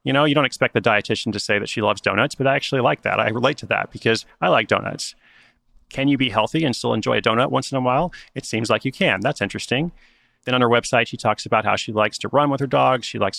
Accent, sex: American, male